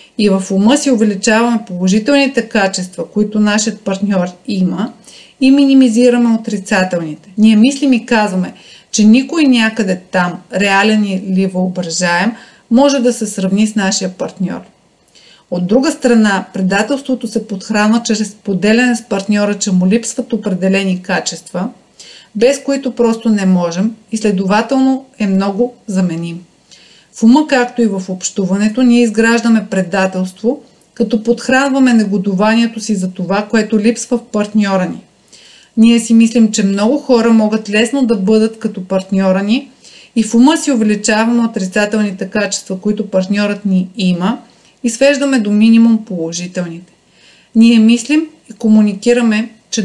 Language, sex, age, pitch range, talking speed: Bulgarian, female, 30-49, 195-235 Hz, 135 wpm